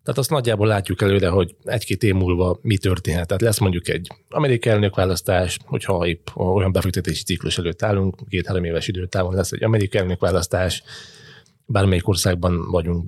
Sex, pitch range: male, 95-110 Hz